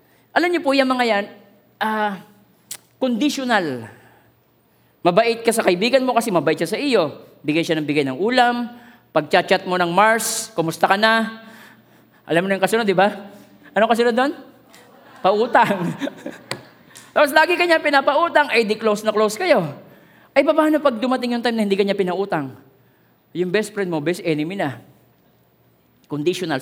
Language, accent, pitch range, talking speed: Filipino, native, 180-245 Hz, 160 wpm